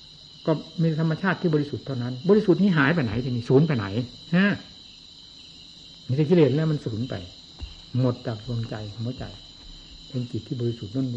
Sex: male